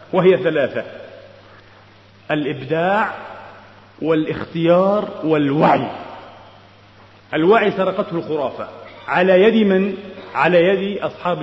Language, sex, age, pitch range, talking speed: Arabic, male, 40-59, 180-240 Hz, 75 wpm